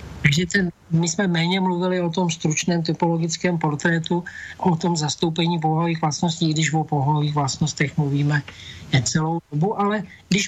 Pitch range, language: 145-175 Hz, Slovak